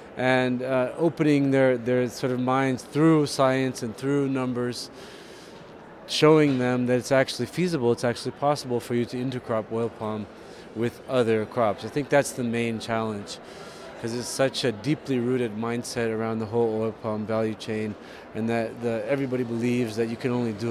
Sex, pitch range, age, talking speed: male, 115-140 Hz, 30-49, 175 wpm